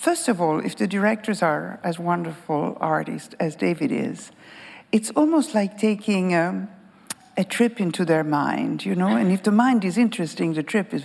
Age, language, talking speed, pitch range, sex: 60-79, English, 185 wpm, 180-245 Hz, female